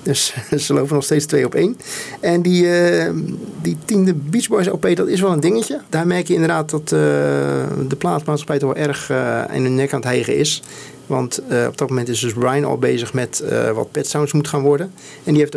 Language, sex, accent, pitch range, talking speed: Dutch, male, Dutch, 130-150 Hz, 235 wpm